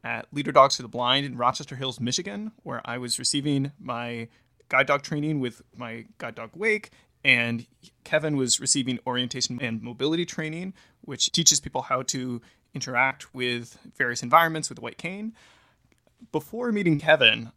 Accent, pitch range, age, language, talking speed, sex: American, 120-150 Hz, 20-39, English, 160 wpm, male